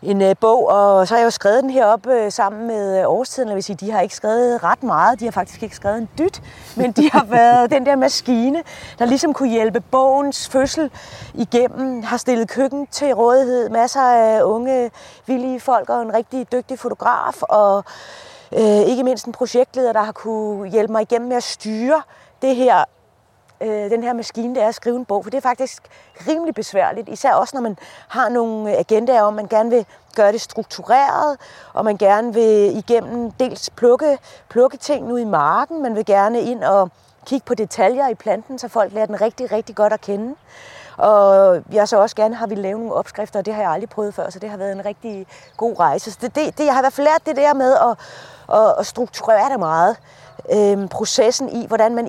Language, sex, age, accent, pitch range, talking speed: Danish, female, 30-49, native, 215-255 Hz, 205 wpm